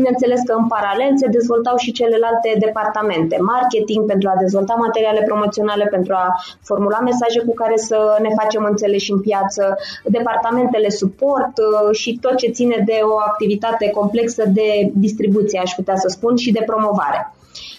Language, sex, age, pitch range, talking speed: Romanian, female, 20-39, 200-230 Hz, 155 wpm